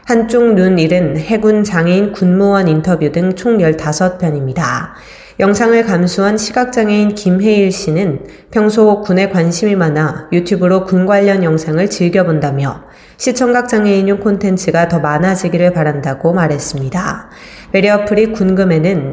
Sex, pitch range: female, 165-205 Hz